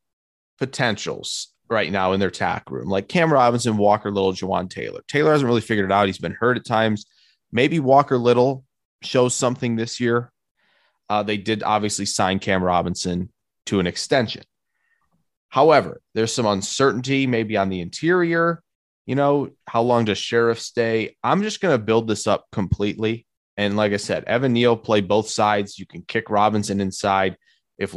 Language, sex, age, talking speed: English, male, 20-39, 170 wpm